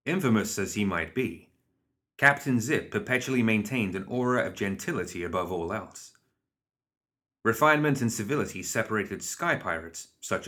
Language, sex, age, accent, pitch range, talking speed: English, male, 30-49, British, 95-130 Hz, 130 wpm